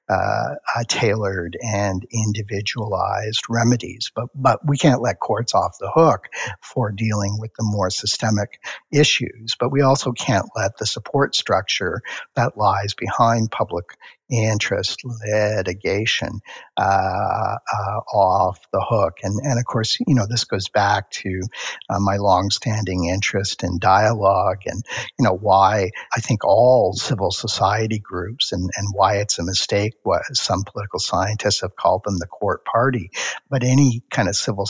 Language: English